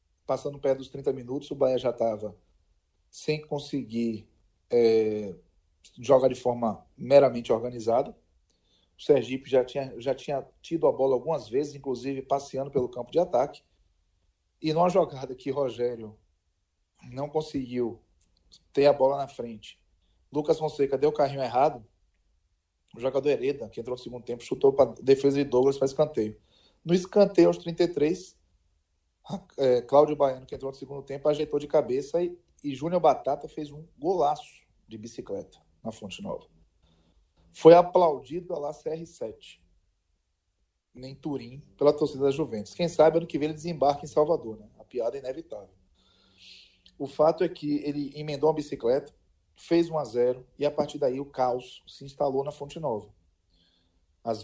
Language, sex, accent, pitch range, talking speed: Portuguese, male, Brazilian, 95-150 Hz, 155 wpm